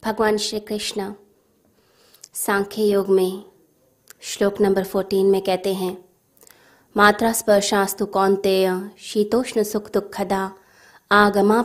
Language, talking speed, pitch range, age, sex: Hindi, 100 wpm, 190-220 Hz, 20-39, female